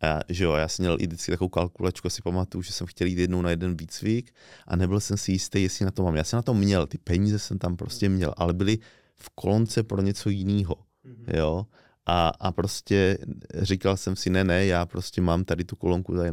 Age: 20-39